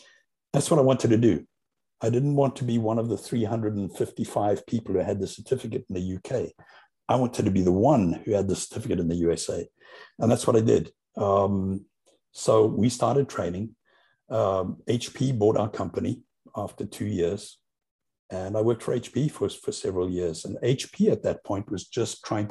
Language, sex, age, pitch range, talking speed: English, male, 60-79, 95-115 Hz, 190 wpm